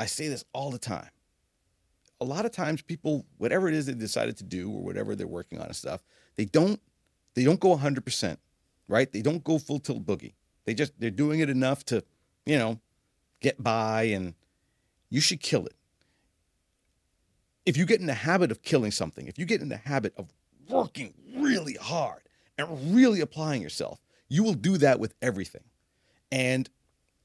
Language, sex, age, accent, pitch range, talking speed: English, male, 40-59, American, 110-165 Hz, 185 wpm